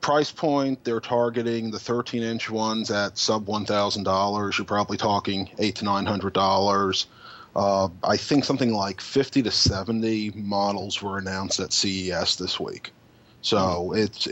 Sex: male